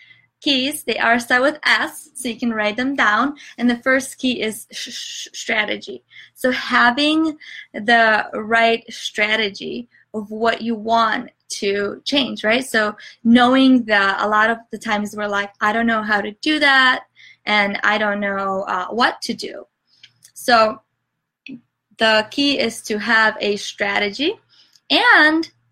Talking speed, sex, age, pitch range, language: 145 wpm, female, 20-39, 215-265 Hz, English